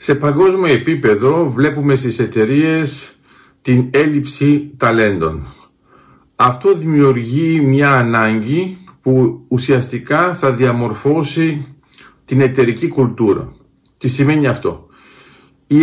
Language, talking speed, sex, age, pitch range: Greek, 90 wpm, male, 50-69, 120-160 Hz